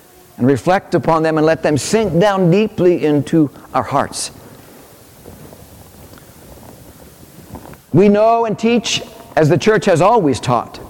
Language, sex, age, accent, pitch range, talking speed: English, male, 60-79, American, 145-200 Hz, 125 wpm